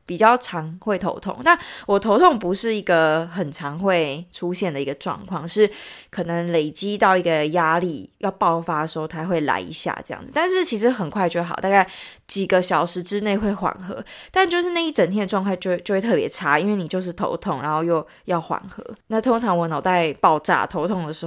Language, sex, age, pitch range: Chinese, female, 20-39, 165-210 Hz